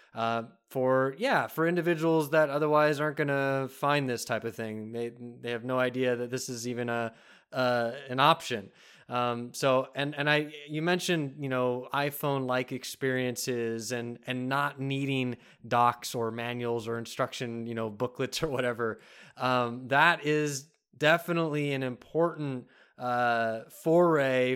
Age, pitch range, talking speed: 20-39, 120-145 Hz, 150 wpm